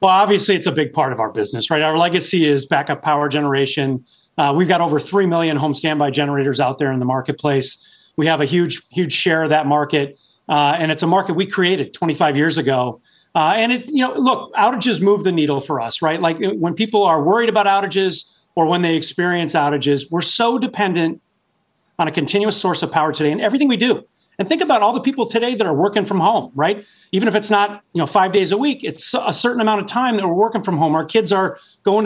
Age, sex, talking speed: 30-49, male, 235 wpm